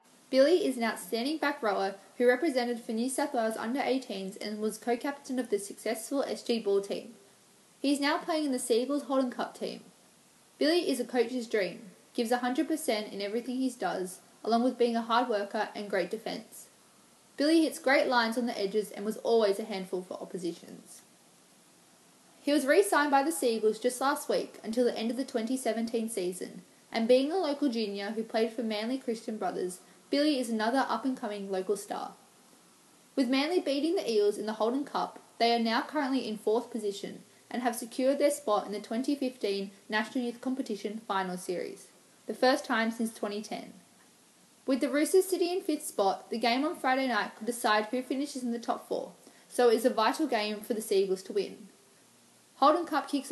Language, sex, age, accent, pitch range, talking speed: English, female, 10-29, Australian, 215-270 Hz, 190 wpm